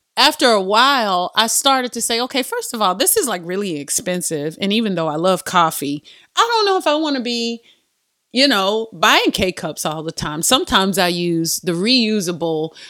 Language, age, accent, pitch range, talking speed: English, 30-49, American, 180-255 Hz, 200 wpm